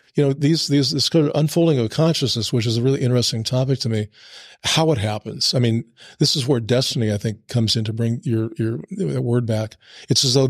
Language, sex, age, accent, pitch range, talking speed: English, male, 40-59, American, 115-135 Hz, 230 wpm